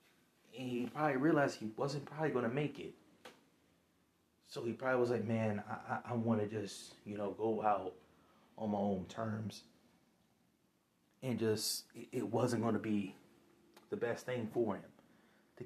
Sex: male